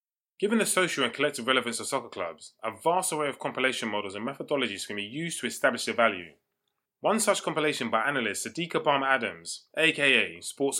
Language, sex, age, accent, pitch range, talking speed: English, male, 20-39, British, 115-170 Hz, 185 wpm